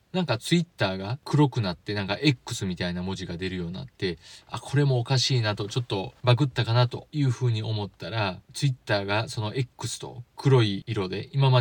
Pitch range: 95-130 Hz